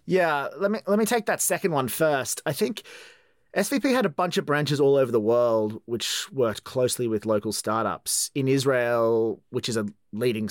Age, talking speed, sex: 30-49, 195 wpm, male